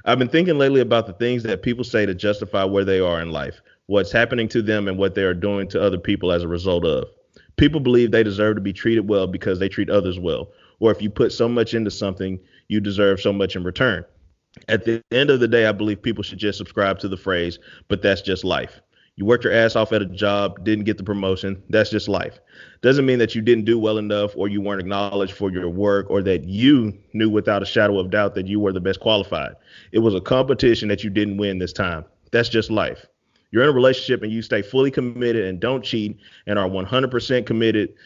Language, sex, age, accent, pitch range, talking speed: English, male, 30-49, American, 100-115 Hz, 240 wpm